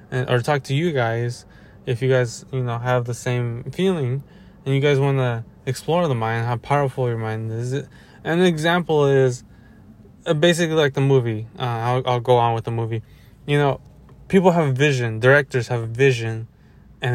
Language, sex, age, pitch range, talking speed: English, male, 20-39, 115-140 Hz, 190 wpm